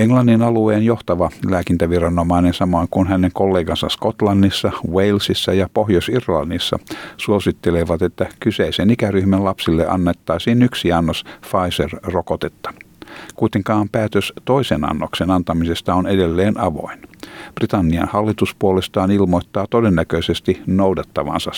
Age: 60-79